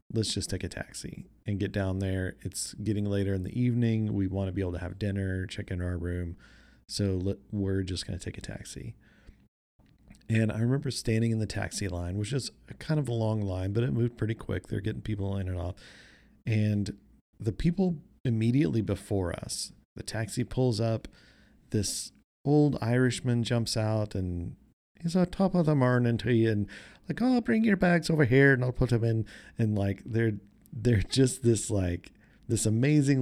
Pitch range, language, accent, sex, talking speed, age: 95-120 Hz, English, American, male, 195 wpm, 40-59